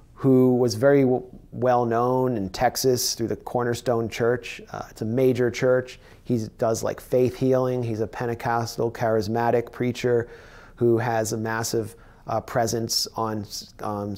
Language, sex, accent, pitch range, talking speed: English, male, American, 105-125 Hz, 150 wpm